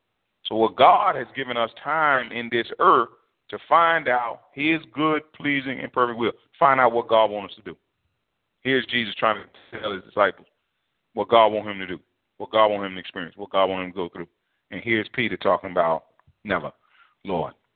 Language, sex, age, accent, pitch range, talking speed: English, male, 40-59, American, 100-120 Hz, 205 wpm